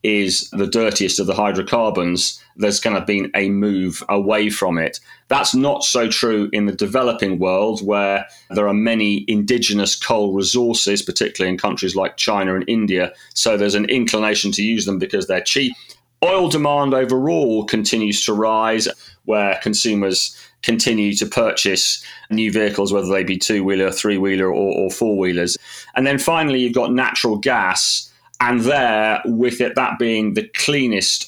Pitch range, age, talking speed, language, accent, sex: 100-115 Hz, 30-49, 160 wpm, English, British, male